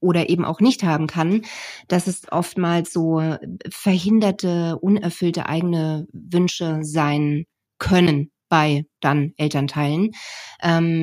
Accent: German